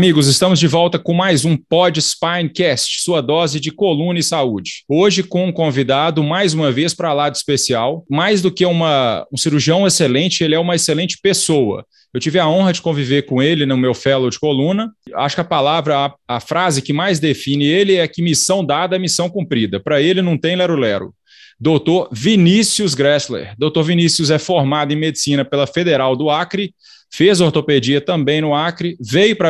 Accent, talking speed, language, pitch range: Brazilian, 185 wpm, Portuguese, 145-175 Hz